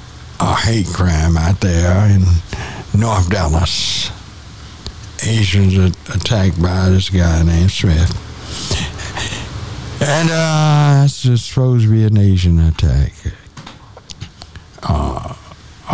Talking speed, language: 100 wpm, English